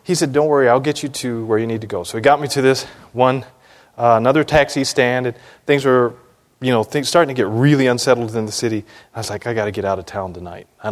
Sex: male